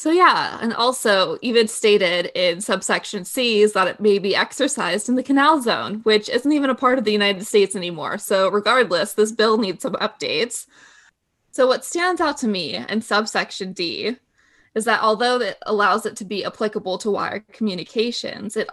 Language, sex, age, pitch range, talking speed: English, female, 20-39, 195-230 Hz, 185 wpm